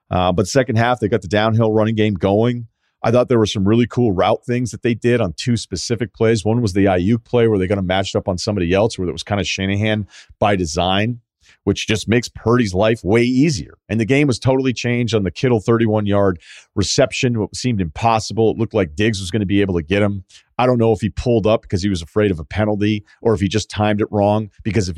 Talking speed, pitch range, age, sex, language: 250 wpm, 95-115 Hz, 40-59, male, English